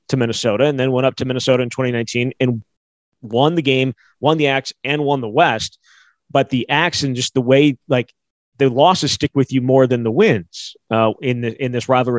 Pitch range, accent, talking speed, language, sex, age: 120-140 Hz, American, 215 wpm, English, male, 30-49